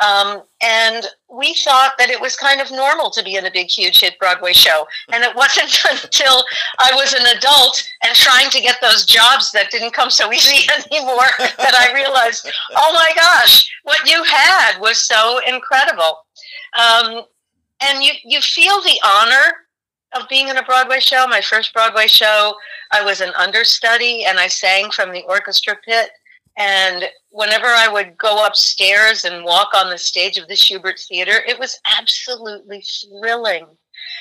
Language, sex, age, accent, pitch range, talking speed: English, female, 50-69, American, 190-265 Hz, 170 wpm